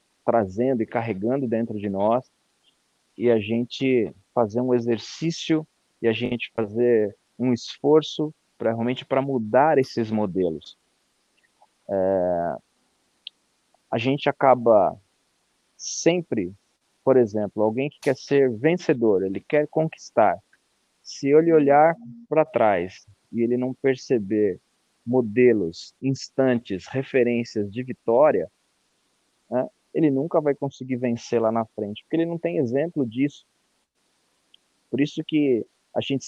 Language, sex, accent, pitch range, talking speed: Portuguese, male, Brazilian, 115-155 Hz, 120 wpm